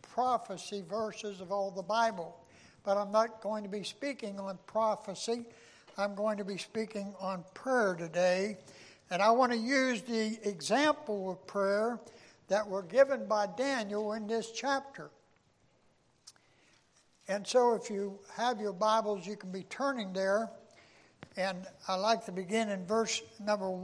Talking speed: 150 wpm